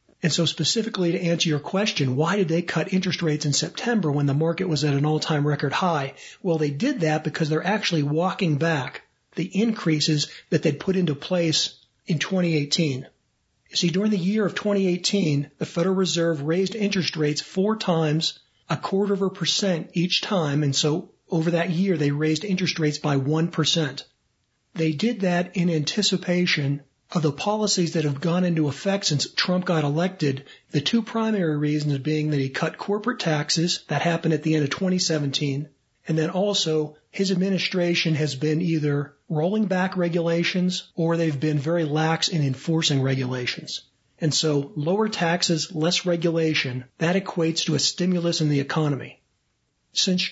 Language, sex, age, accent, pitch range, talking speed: English, male, 40-59, American, 150-180 Hz, 170 wpm